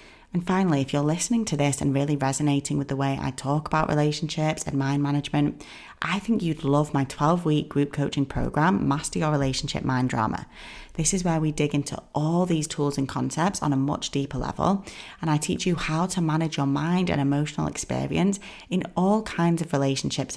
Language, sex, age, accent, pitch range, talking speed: English, female, 30-49, British, 140-170 Hz, 195 wpm